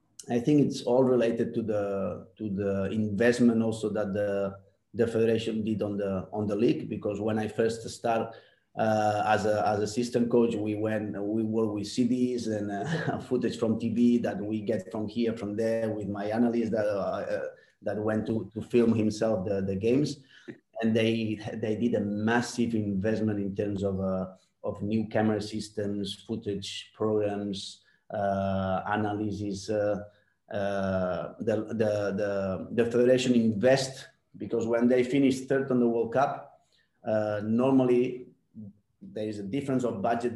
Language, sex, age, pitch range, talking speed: English, male, 30-49, 105-120 Hz, 160 wpm